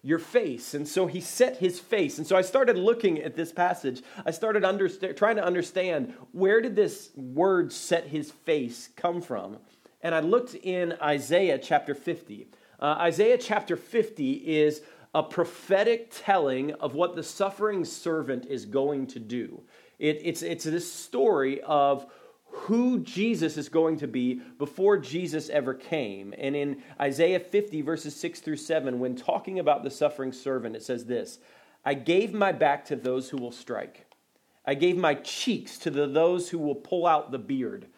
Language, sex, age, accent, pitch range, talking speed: English, male, 40-59, American, 135-190 Hz, 170 wpm